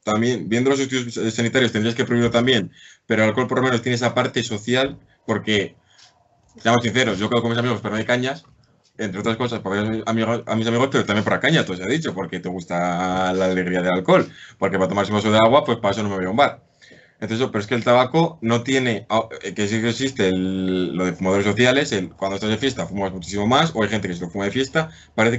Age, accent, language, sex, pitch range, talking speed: 20-39, Spanish, Spanish, male, 100-125 Hz, 240 wpm